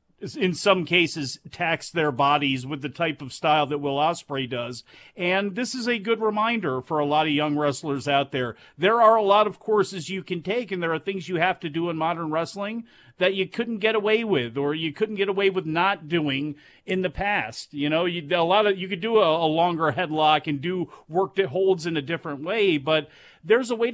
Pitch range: 155-195 Hz